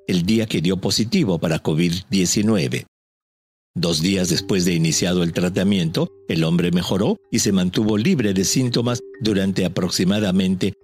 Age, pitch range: 50-69, 95-135 Hz